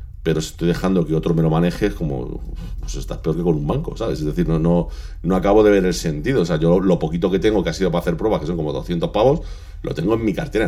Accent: Spanish